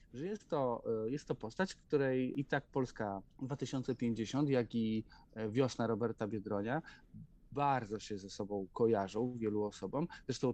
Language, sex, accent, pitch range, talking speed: Polish, male, native, 110-130 Hz, 130 wpm